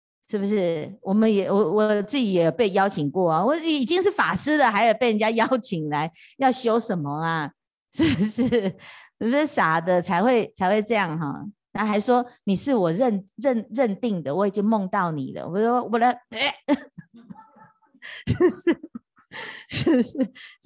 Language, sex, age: Chinese, female, 30-49